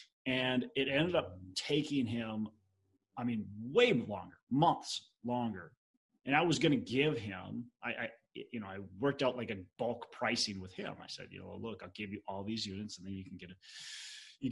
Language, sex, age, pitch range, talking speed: English, male, 30-49, 105-150 Hz, 205 wpm